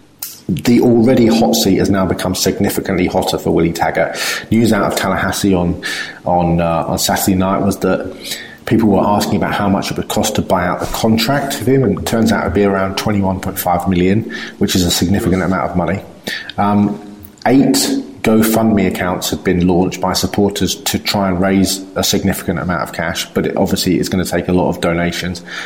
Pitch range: 90-110 Hz